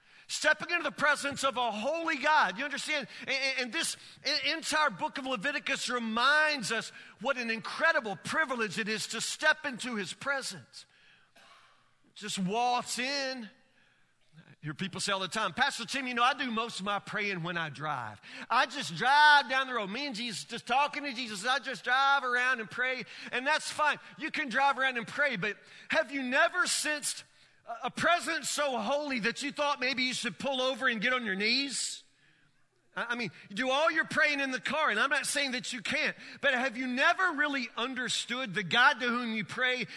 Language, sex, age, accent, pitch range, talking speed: English, male, 40-59, American, 220-285 Hz, 195 wpm